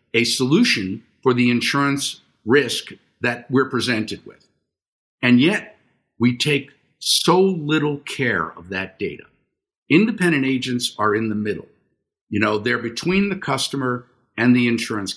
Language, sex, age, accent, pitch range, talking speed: English, male, 50-69, American, 115-140 Hz, 140 wpm